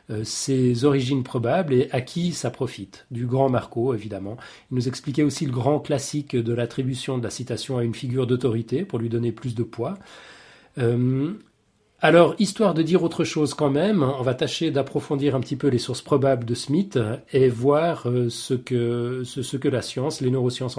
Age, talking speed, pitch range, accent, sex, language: 40-59, 190 wpm, 125-155 Hz, French, male, French